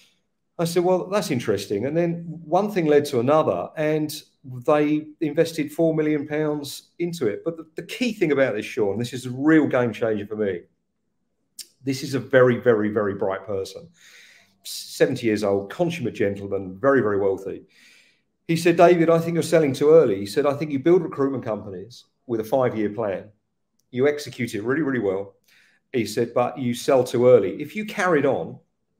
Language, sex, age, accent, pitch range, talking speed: English, male, 40-59, British, 120-165 Hz, 185 wpm